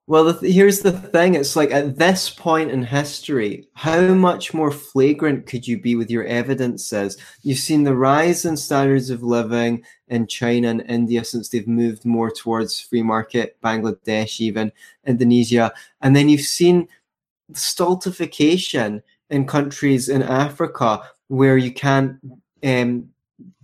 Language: English